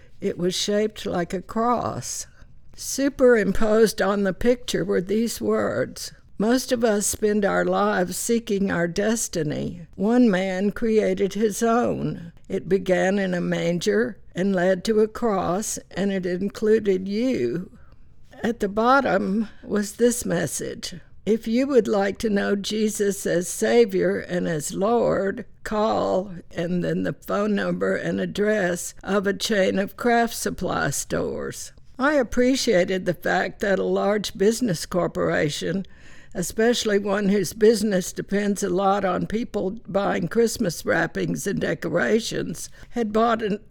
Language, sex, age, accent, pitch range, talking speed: English, female, 60-79, American, 190-225 Hz, 135 wpm